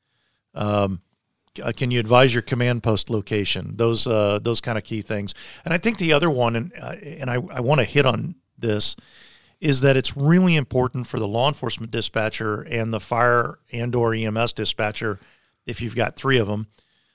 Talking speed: 190 wpm